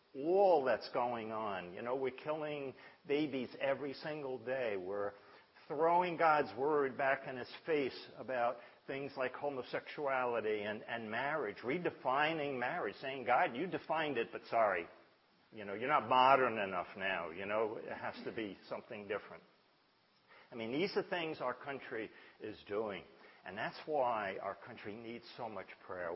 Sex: male